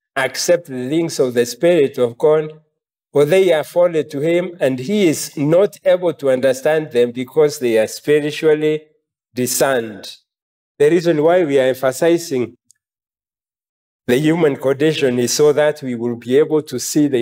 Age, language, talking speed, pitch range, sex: 50-69, English, 160 wpm, 120-155 Hz, male